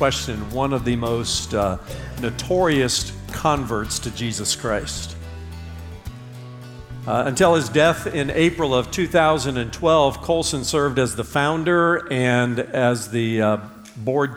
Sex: male